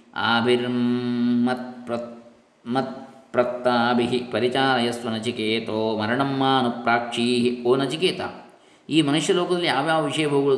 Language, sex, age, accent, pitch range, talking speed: Kannada, male, 20-39, native, 115-135 Hz, 90 wpm